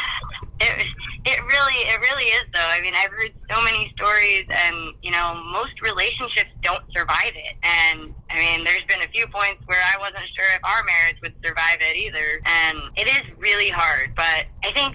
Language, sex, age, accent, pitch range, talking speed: English, female, 20-39, American, 165-190 Hz, 195 wpm